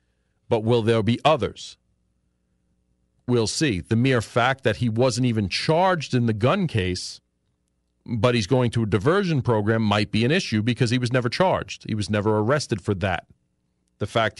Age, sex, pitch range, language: 40-59, male, 95-130 Hz, English